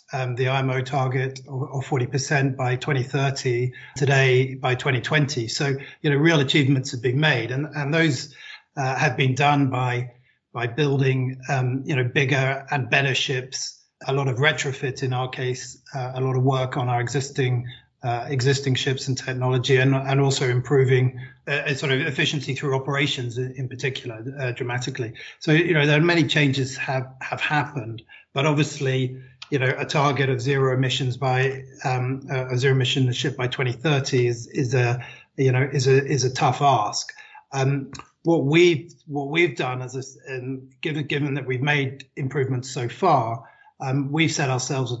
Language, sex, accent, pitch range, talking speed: English, male, British, 130-145 Hz, 170 wpm